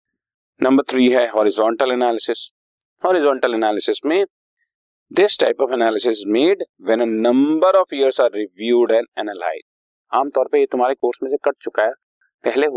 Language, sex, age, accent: Hindi, male, 40-59, native